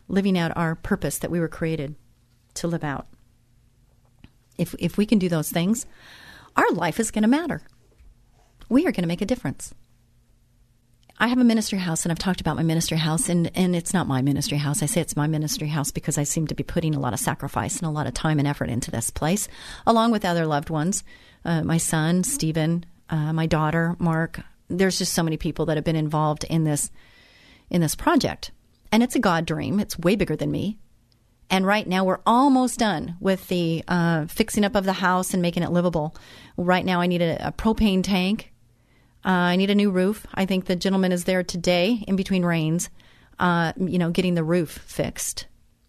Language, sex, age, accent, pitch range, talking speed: English, female, 40-59, American, 155-185 Hz, 210 wpm